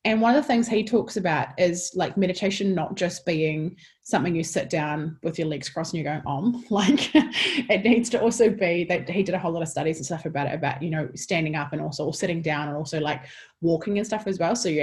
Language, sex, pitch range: English, female, 155-200 Hz